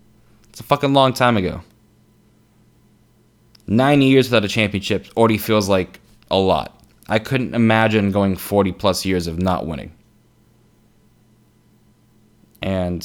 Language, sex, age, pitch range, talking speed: English, male, 20-39, 105-115 Hz, 125 wpm